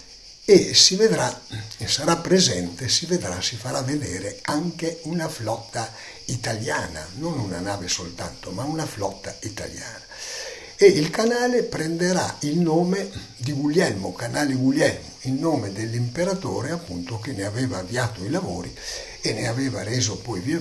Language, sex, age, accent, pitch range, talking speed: Italian, male, 60-79, native, 100-150 Hz, 145 wpm